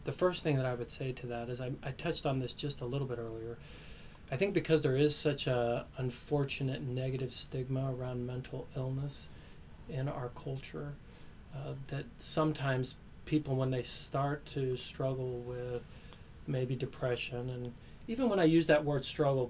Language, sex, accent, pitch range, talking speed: English, male, American, 125-150 Hz, 170 wpm